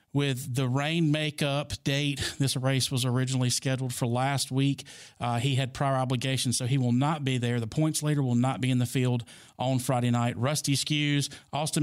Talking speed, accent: 200 wpm, American